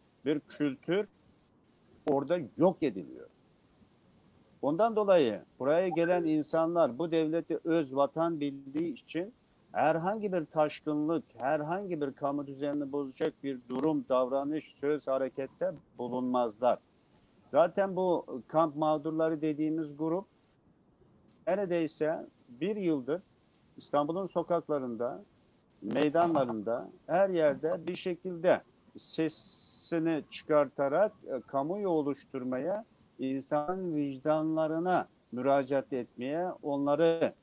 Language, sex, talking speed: Turkish, male, 90 wpm